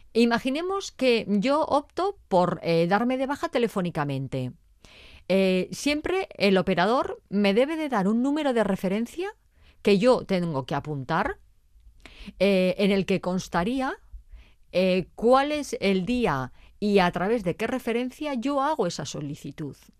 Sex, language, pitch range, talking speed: female, Spanish, 170-250 Hz, 140 wpm